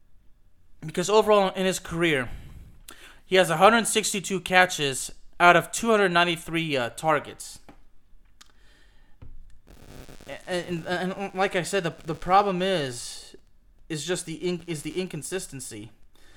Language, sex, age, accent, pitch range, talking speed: English, male, 20-39, American, 140-185 Hz, 115 wpm